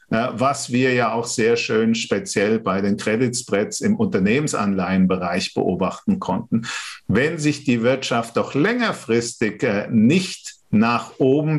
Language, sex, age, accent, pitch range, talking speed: German, male, 50-69, German, 120-160 Hz, 125 wpm